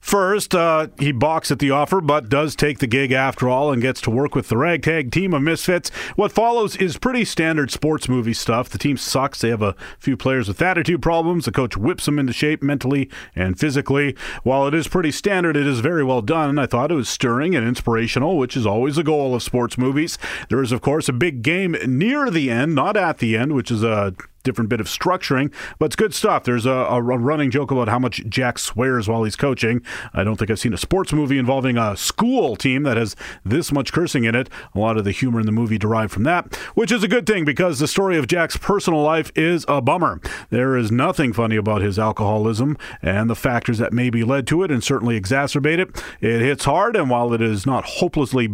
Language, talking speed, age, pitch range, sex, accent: English, 235 wpm, 40-59, 115-155 Hz, male, American